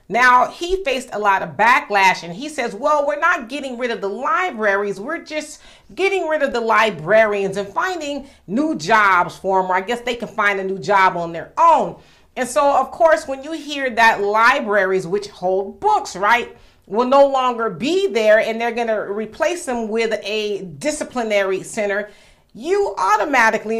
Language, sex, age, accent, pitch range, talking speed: English, female, 40-59, American, 205-285 Hz, 185 wpm